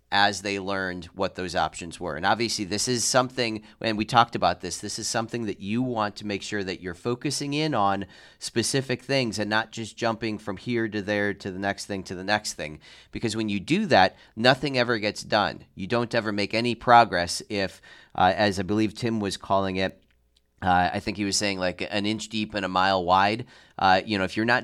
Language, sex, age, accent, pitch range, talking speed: English, male, 30-49, American, 95-115 Hz, 225 wpm